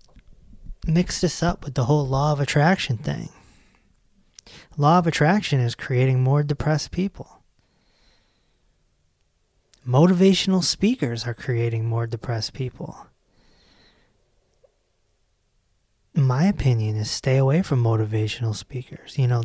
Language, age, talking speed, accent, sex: English, 30-49, 110 wpm, American, male